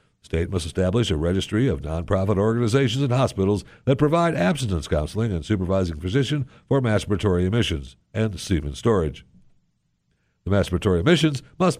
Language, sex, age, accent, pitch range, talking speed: English, male, 60-79, American, 85-130 Hz, 135 wpm